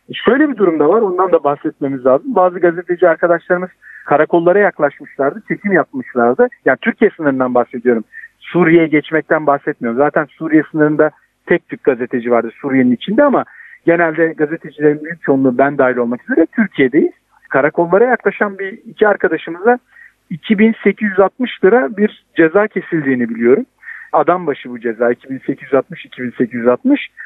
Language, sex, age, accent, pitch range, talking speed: Turkish, male, 50-69, native, 145-205 Hz, 130 wpm